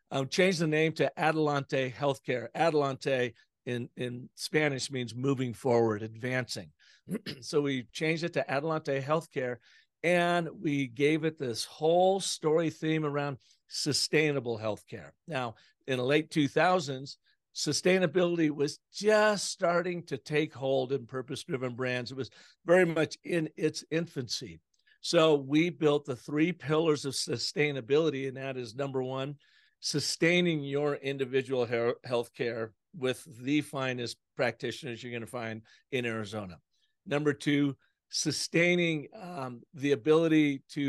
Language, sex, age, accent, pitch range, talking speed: English, male, 50-69, American, 125-155 Hz, 130 wpm